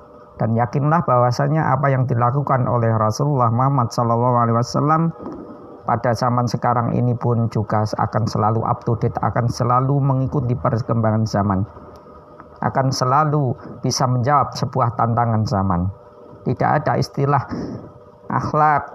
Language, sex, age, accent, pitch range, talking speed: Indonesian, male, 50-69, native, 110-130 Hz, 115 wpm